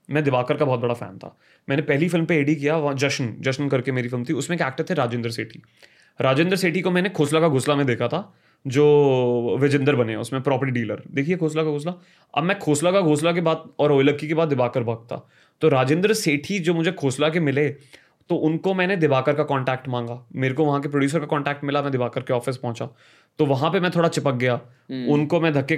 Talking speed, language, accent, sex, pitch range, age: 225 wpm, Hindi, native, male, 130-160 Hz, 20-39